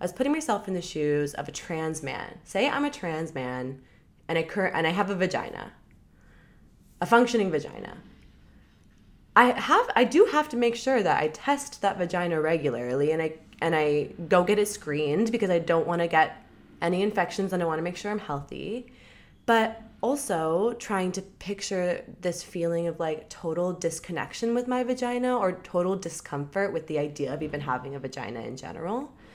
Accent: American